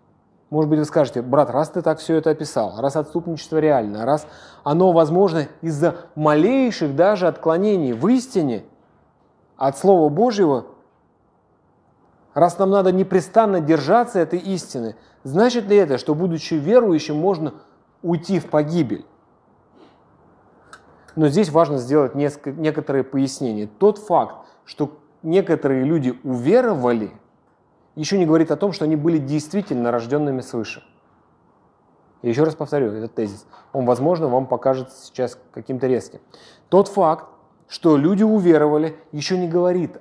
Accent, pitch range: native, 135-175 Hz